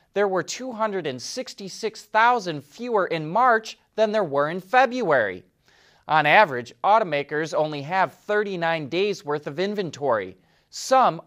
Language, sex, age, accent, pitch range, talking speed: English, male, 30-49, American, 145-220 Hz, 115 wpm